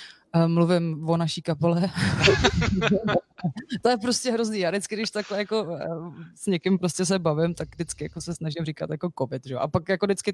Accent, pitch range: native, 155-180 Hz